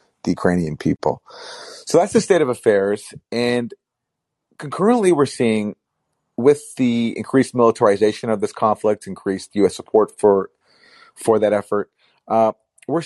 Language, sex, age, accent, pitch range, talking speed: English, male, 40-59, American, 100-125 Hz, 130 wpm